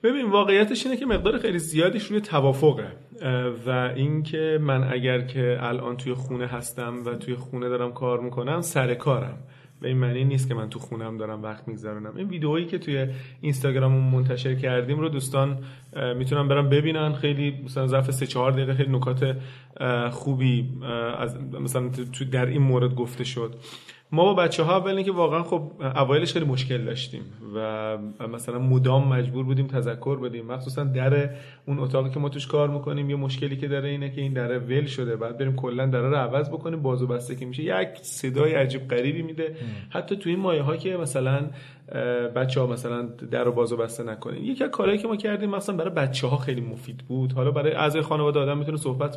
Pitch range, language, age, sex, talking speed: 125-155 Hz, Persian, 30-49, male, 180 wpm